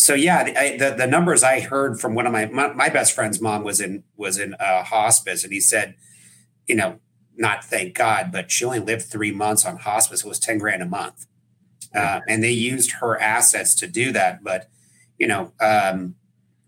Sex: male